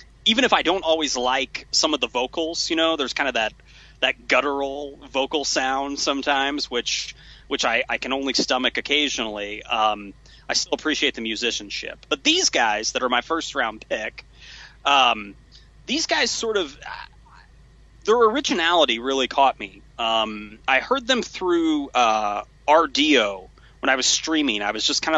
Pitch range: 120-165 Hz